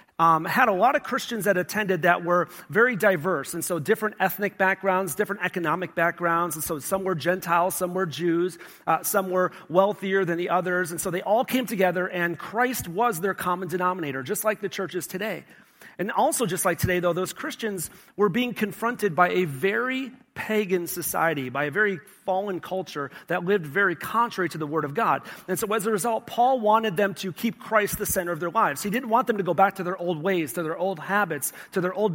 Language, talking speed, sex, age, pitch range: English, 215 wpm, male, 40-59, 170-210 Hz